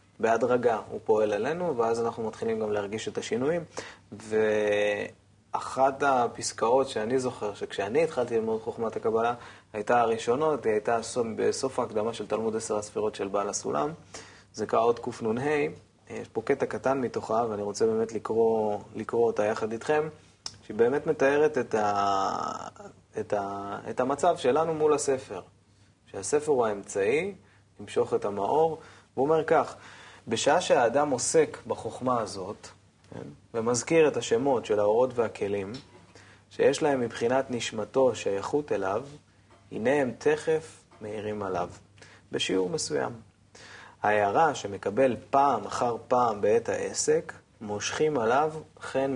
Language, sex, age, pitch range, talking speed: Hebrew, male, 20-39, 105-170 Hz, 130 wpm